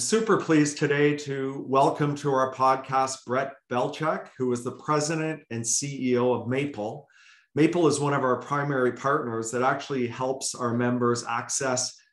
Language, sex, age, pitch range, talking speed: English, male, 40-59, 115-135 Hz, 155 wpm